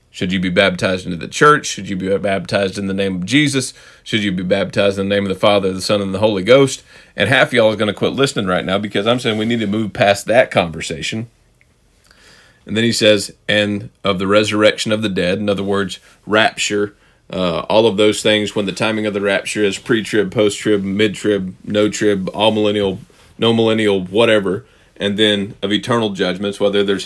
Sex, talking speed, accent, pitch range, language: male, 210 wpm, American, 95-110 Hz, English